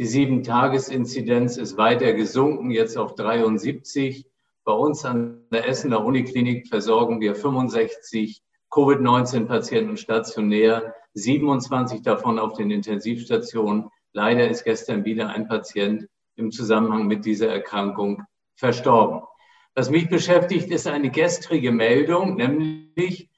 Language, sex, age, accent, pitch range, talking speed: German, male, 50-69, German, 120-145 Hz, 115 wpm